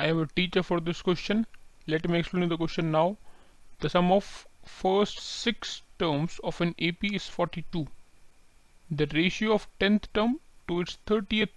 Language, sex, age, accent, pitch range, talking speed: Hindi, male, 30-49, native, 155-190 Hz, 165 wpm